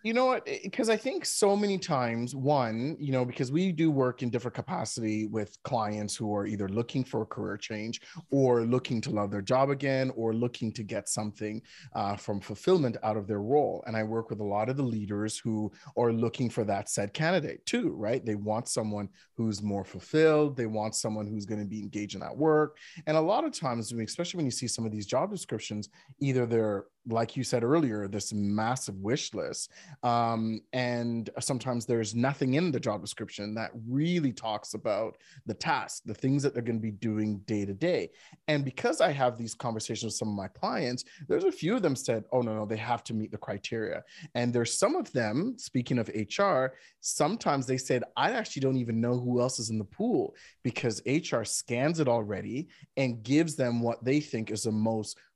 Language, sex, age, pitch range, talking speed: English, male, 30-49, 110-135 Hz, 210 wpm